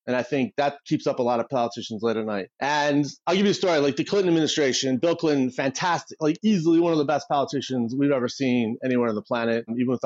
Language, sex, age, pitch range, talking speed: English, male, 30-49, 125-160 Hz, 250 wpm